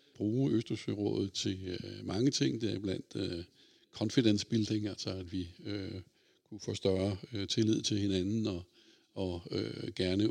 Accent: native